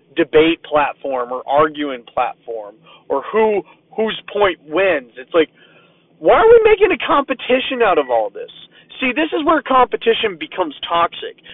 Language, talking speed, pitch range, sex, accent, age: English, 150 wpm, 150-220 Hz, male, American, 30-49